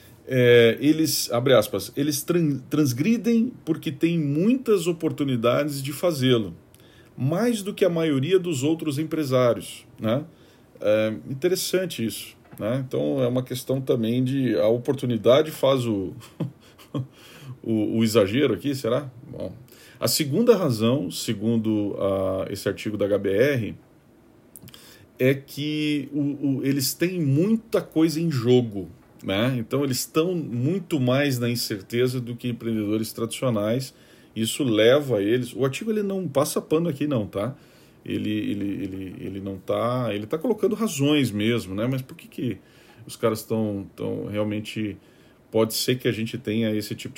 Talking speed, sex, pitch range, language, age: 145 wpm, male, 110-145 Hz, Portuguese, 40-59